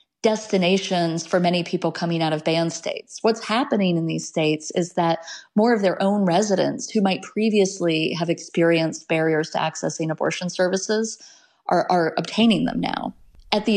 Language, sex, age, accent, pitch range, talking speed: English, female, 30-49, American, 165-200 Hz, 165 wpm